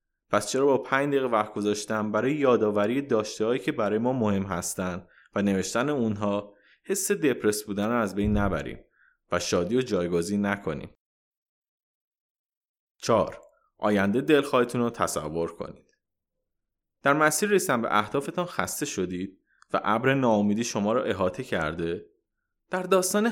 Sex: male